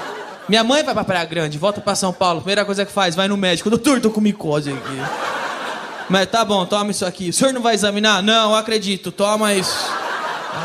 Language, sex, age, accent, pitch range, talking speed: Portuguese, male, 20-39, Brazilian, 175-245 Hz, 220 wpm